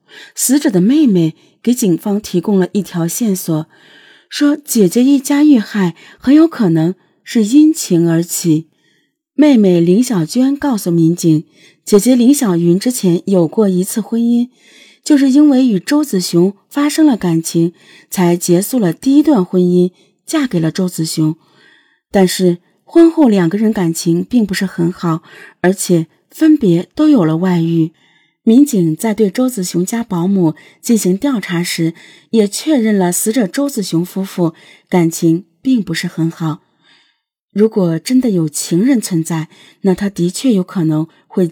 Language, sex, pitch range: Chinese, female, 170-240 Hz